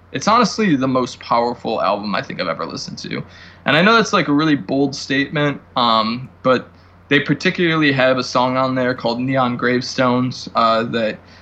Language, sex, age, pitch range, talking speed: English, male, 20-39, 115-145 Hz, 185 wpm